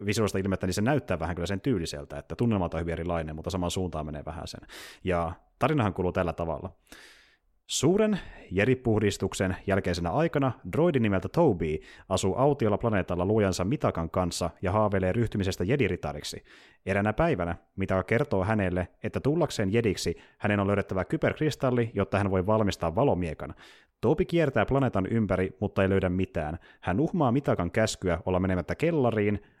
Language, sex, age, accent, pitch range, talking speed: Finnish, male, 30-49, native, 90-120 Hz, 150 wpm